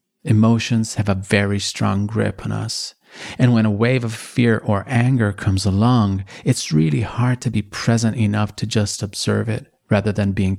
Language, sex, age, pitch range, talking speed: Italian, male, 40-59, 100-115 Hz, 180 wpm